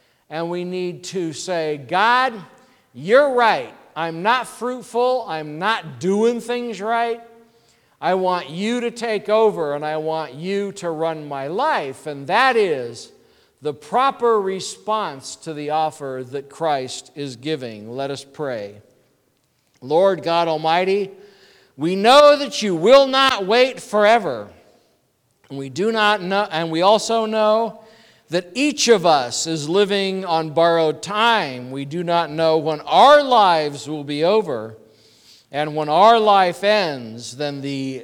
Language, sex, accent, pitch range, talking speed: English, male, American, 145-215 Hz, 145 wpm